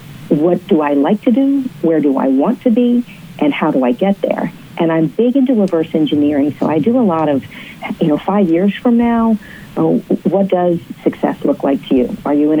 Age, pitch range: 40-59, 155-230 Hz